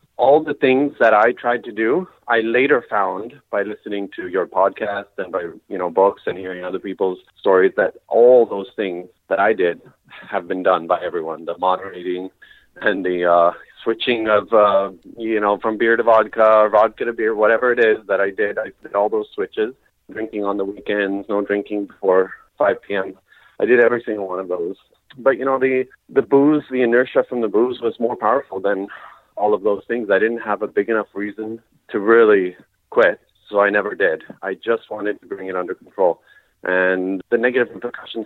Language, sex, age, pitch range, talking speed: English, male, 30-49, 95-140 Hz, 200 wpm